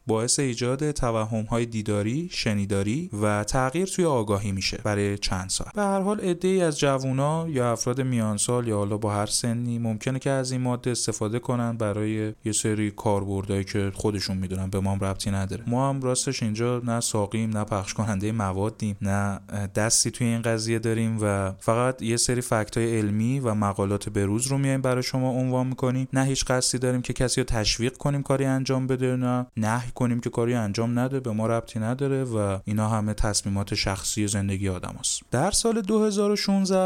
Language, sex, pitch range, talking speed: Persian, male, 110-145 Hz, 180 wpm